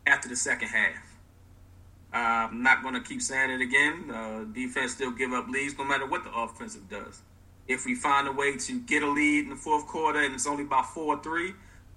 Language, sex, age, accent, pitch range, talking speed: English, male, 30-49, American, 115-150 Hz, 215 wpm